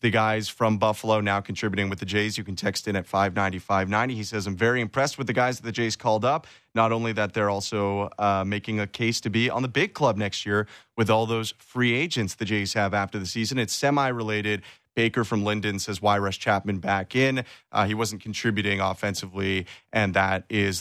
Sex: male